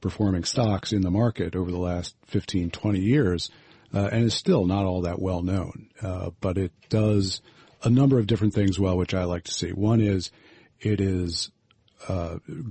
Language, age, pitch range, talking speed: English, 40-59, 90-110 Hz, 180 wpm